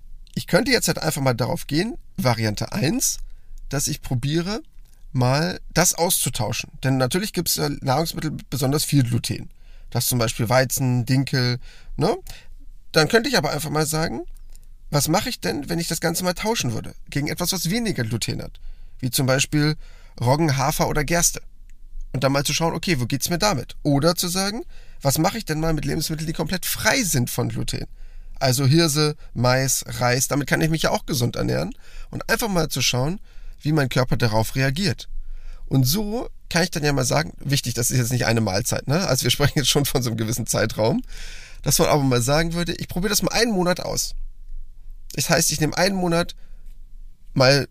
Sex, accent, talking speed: male, German, 195 wpm